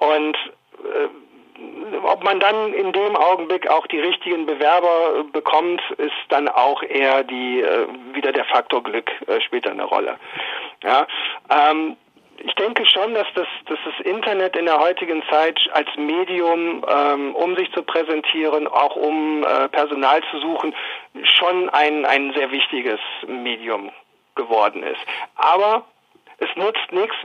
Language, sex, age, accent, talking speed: German, male, 50-69, German, 140 wpm